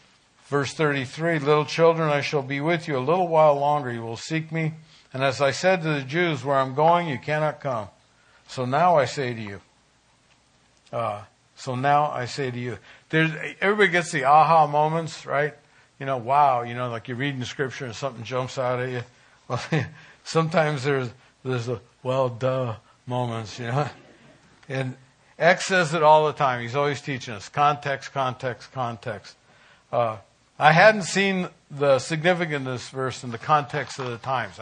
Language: English